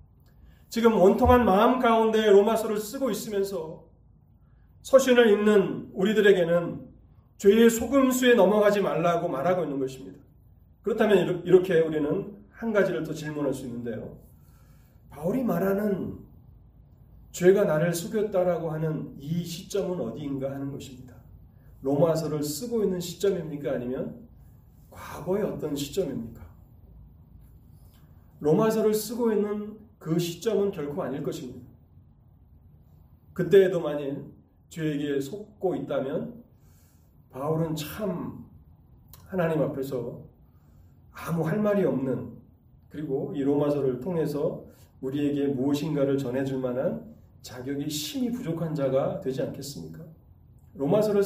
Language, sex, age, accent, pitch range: Korean, male, 40-59, native, 130-195 Hz